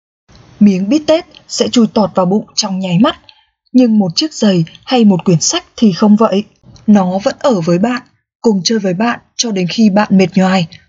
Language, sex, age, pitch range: Vietnamese, female, 20-39, 185-235 Hz